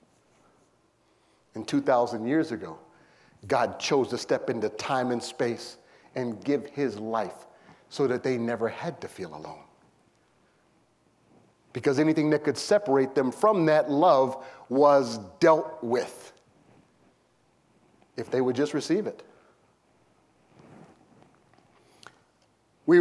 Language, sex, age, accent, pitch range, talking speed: English, male, 40-59, American, 130-180 Hz, 110 wpm